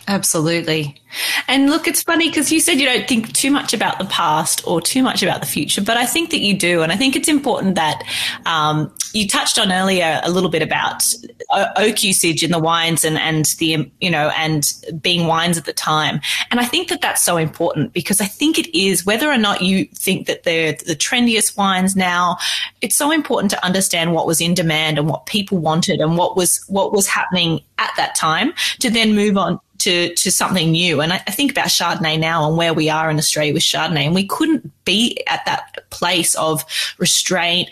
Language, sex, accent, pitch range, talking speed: English, female, Australian, 160-210 Hz, 215 wpm